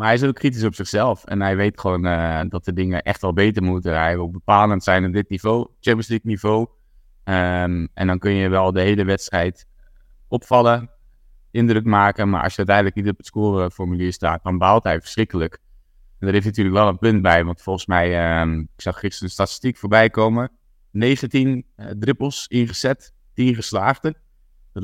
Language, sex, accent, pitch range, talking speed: Dutch, male, Dutch, 90-110 Hz, 195 wpm